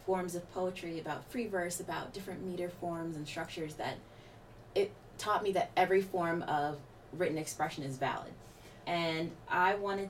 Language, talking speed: English, 160 wpm